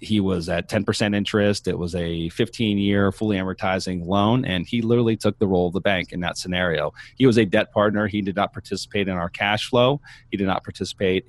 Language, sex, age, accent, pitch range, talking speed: English, male, 30-49, American, 90-110 Hz, 225 wpm